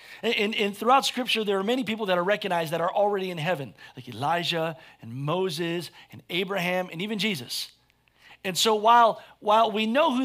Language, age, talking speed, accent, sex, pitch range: English, 40-59, 195 wpm, American, male, 170-225 Hz